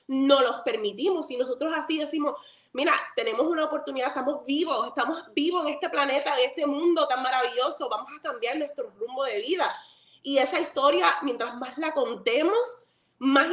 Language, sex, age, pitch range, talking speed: Spanish, female, 20-39, 265-390 Hz, 170 wpm